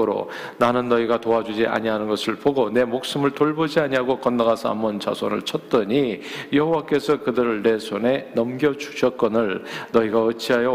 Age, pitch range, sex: 40-59, 110-130 Hz, male